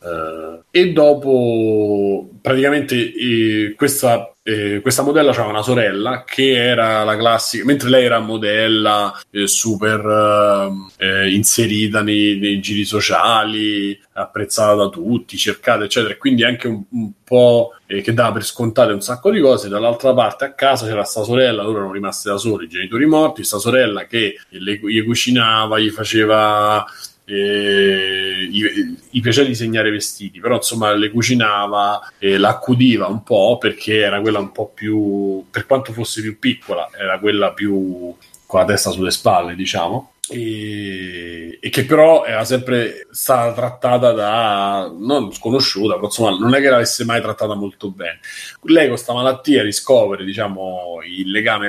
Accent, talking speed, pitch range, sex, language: native, 155 wpm, 100-125 Hz, male, Italian